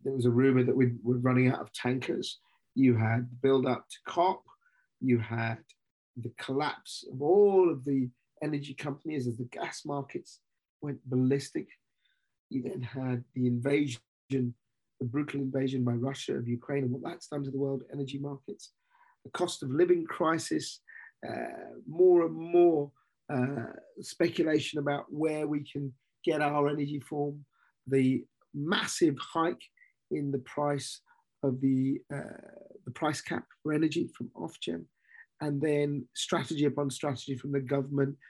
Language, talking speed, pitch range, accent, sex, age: English, 150 wpm, 125-155 Hz, British, male, 40-59